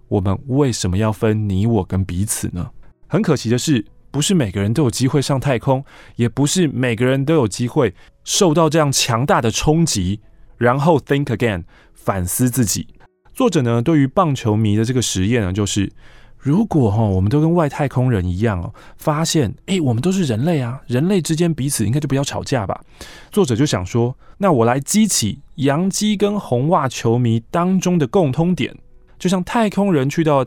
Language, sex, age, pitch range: Chinese, male, 20-39, 110-160 Hz